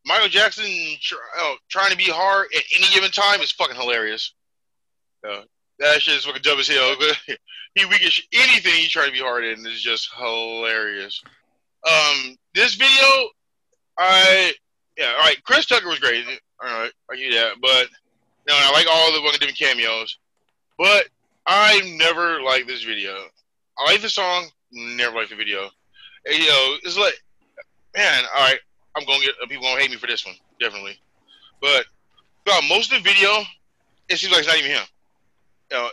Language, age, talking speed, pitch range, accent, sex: English, 20-39, 185 wpm, 145-205 Hz, American, male